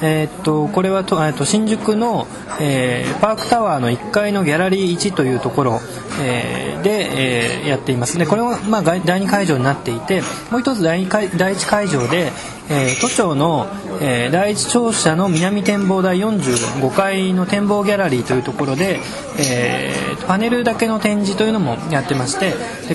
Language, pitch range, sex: Japanese, 145-200 Hz, male